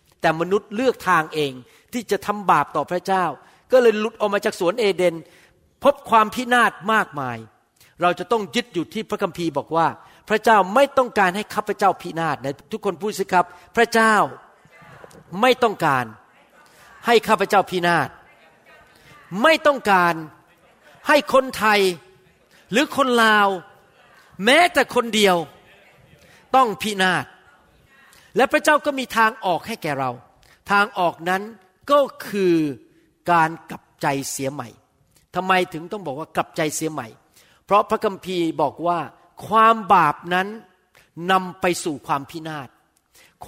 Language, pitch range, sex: Thai, 165-220 Hz, male